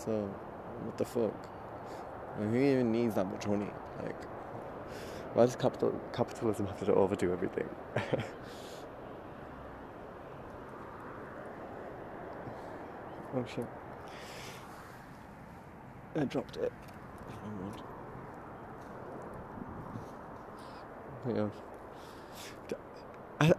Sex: male